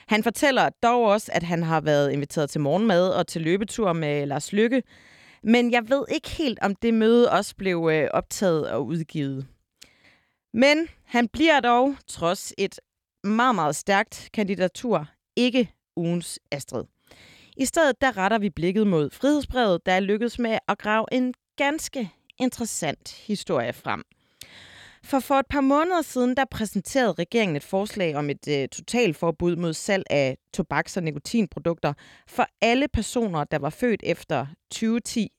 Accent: native